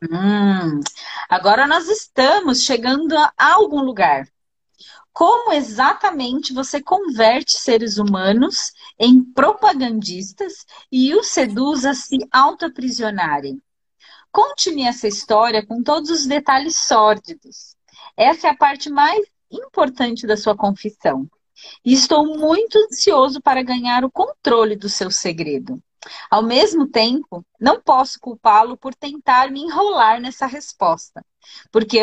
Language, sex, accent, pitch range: Portuguese, female, Brazilian, 215-295 Hz